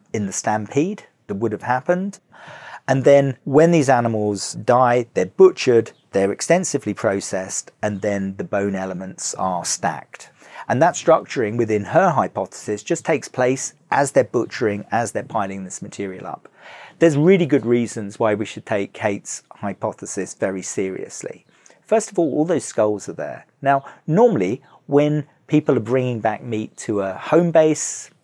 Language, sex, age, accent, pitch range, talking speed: English, male, 40-59, British, 100-140 Hz, 160 wpm